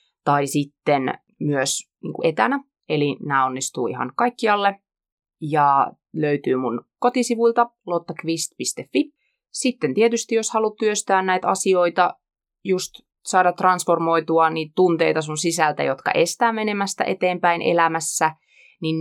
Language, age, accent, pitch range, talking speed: Finnish, 30-49, native, 145-200 Hz, 105 wpm